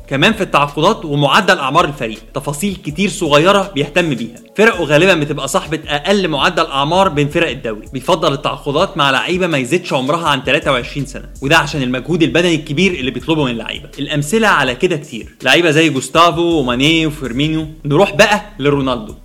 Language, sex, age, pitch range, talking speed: Arabic, male, 20-39, 140-180 Hz, 160 wpm